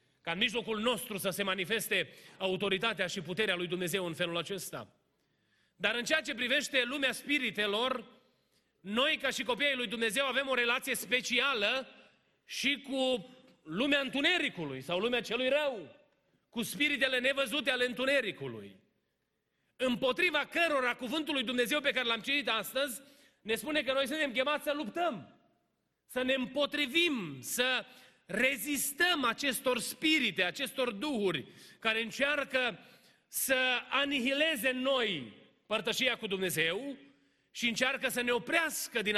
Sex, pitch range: male, 215-270 Hz